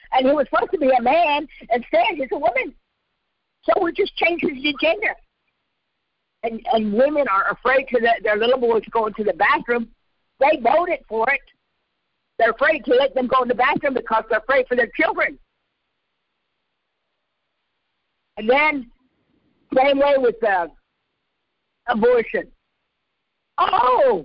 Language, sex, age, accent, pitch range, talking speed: English, female, 50-69, American, 215-300 Hz, 150 wpm